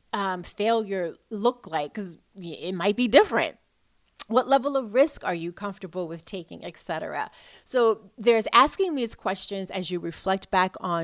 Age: 30-49